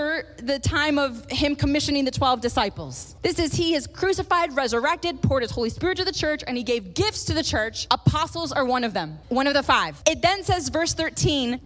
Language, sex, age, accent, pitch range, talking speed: English, female, 20-39, American, 215-280 Hz, 215 wpm